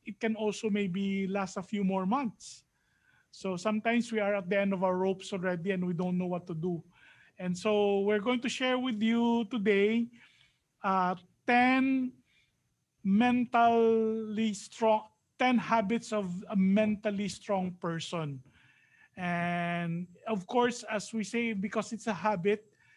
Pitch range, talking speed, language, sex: 190-230 Hz, 150 wpm, English, male